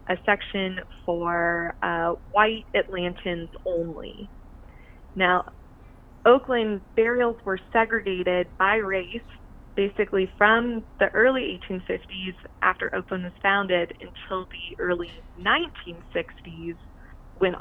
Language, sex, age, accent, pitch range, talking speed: English, female, 20-39, American, 175-200 Hz, 95 wpm